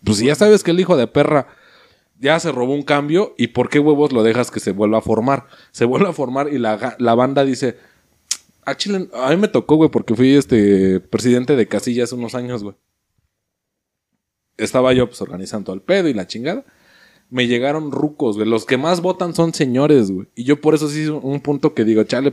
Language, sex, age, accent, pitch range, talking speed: Spanish, male, 30-49, Mexican, 115-150 Hz, 215 wpm